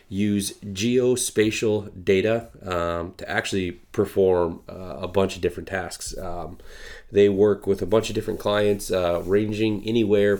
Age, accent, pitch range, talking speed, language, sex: 30-49, American, 90-110 Hz, 145 wpm, English, male